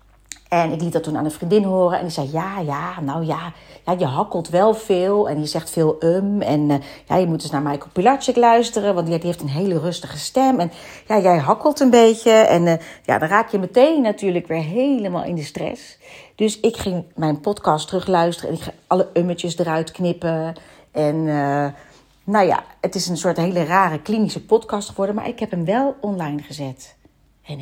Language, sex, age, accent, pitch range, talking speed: Dutch, female, 40-59, Dutch, 165-225 Hz, 200 wpm